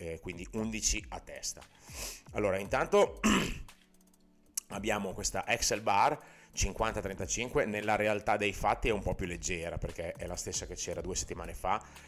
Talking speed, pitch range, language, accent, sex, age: 150 wpm, 85-105 Hz, Italian, native, male, 30-49